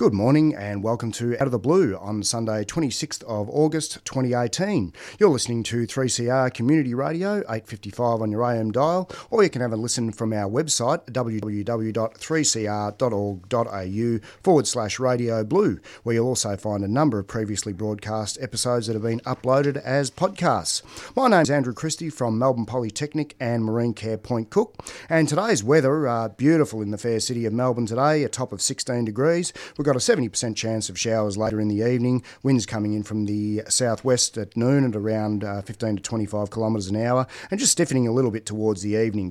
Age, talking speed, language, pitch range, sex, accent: 40-59, 190 wpm, English, 110-130 Hz, male, Australian